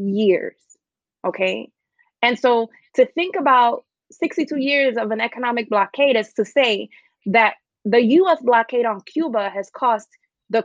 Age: 20-39